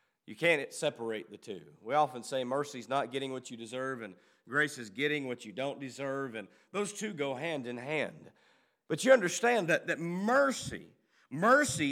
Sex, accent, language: male, American, English